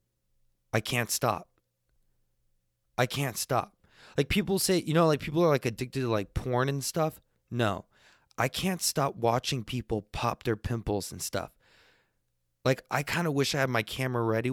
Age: 20-39